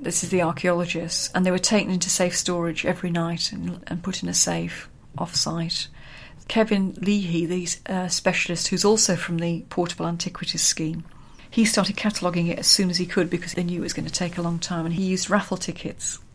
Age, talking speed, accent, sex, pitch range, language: 40-59, 210 wpm, British, female, 170-190 Hz, English